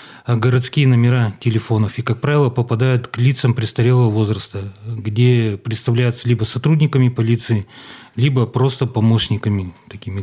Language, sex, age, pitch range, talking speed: Russian, male, 30-49, 110-125 Hz, 115 wpm